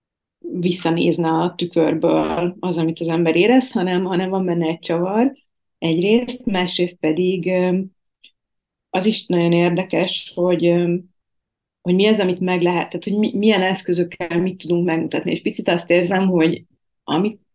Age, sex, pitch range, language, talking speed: 30-49, female, 165-195 Hz, Hungarian, 140 wpm